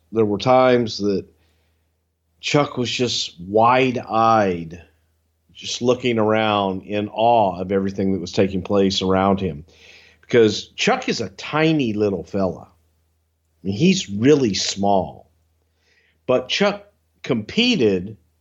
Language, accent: English, American